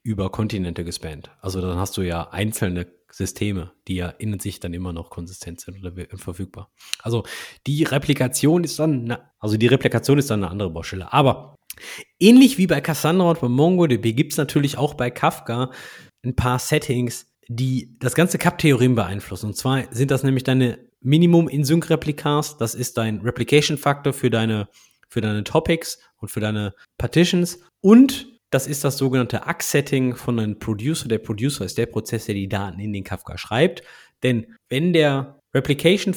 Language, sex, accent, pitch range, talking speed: German, male, German, 105-145 Hz, 170 wpm